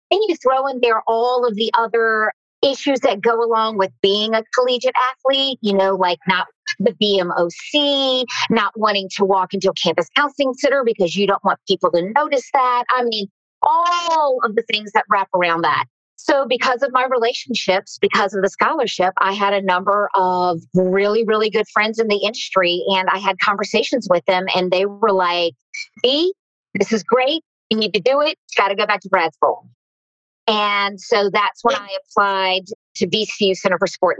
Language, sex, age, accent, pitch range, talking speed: English, female, 40-59, American, 190-250 Hz, 195 wpm